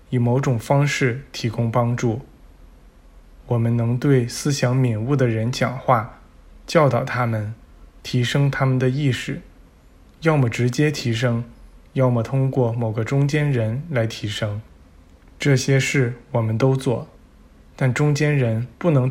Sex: male